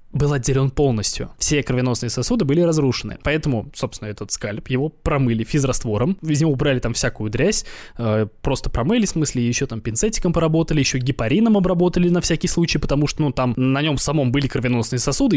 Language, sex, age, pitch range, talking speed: Russian, male, 20-39, 120-165 Hz, 180 wpm